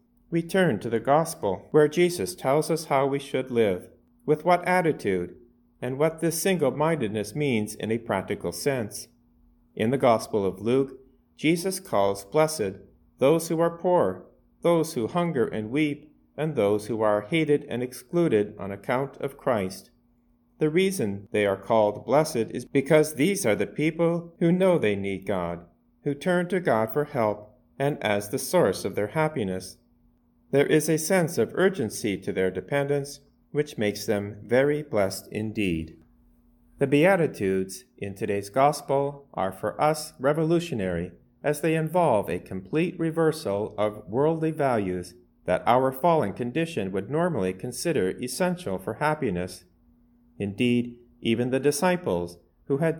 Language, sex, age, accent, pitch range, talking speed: English, male, 40-59, American, 100-155 Hz, 150 wpm